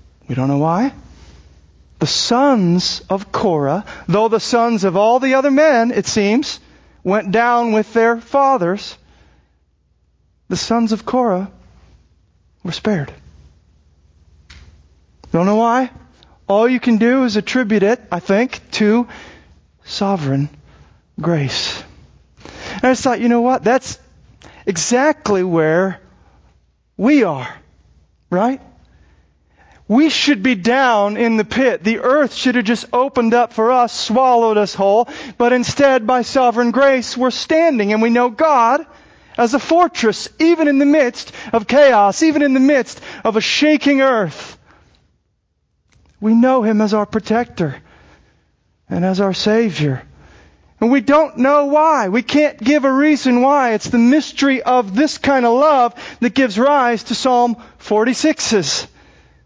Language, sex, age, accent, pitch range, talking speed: English, male, 40-59, American, 155-260 Hz, 140 wpm